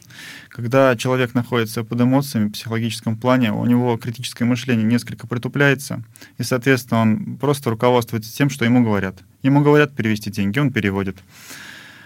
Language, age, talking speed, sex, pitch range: Russian, 20-39, 145 wpm, male, 110-130 Hz